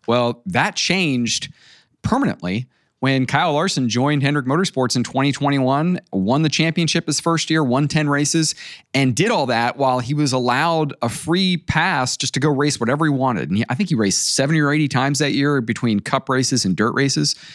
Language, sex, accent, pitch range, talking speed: English, male, American, 120-160 Hz, 190 wpm